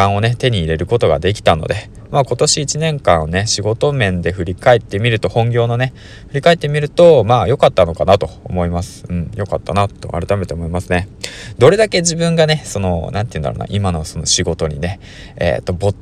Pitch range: 90-120 Hz